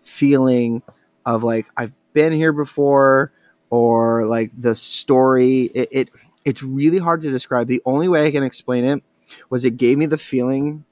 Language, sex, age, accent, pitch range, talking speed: English, male, 20-39, American, 115-130 Hz, 170 wpm